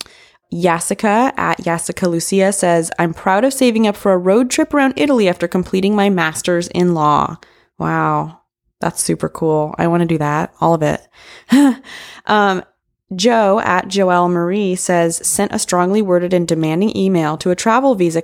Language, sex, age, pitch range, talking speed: English, female, 20-39, 170-220 Hz, 170 wpm